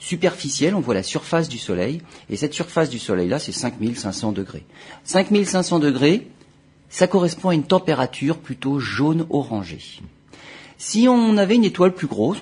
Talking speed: 155 wpm